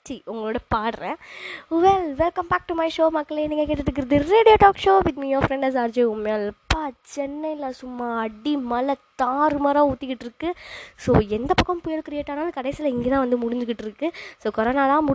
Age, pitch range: 20-39, 230-295 Hz